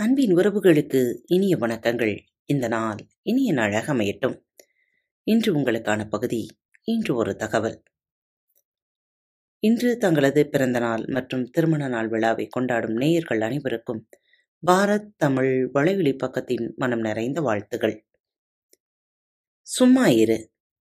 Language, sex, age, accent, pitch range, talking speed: Tamil, female, 30-49, native, 125-195 Hz, 100 wpm